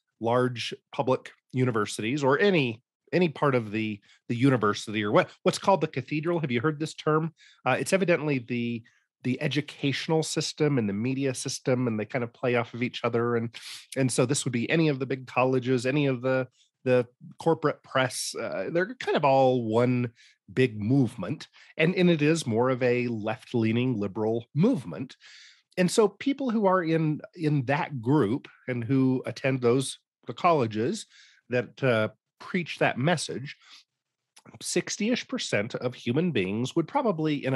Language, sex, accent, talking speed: English, male, American, 170 wpm